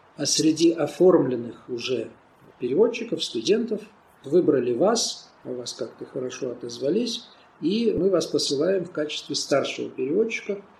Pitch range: 130-200 Hz